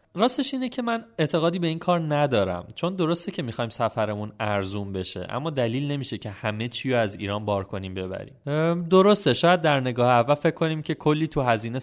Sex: male